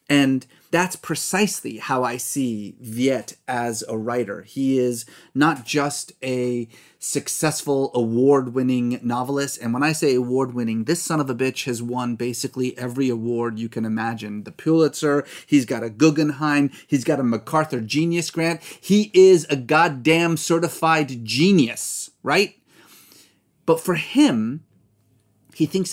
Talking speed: 140 wpm